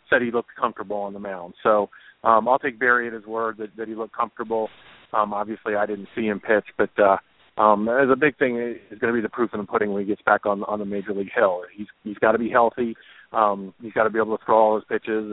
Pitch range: 105-125 Hz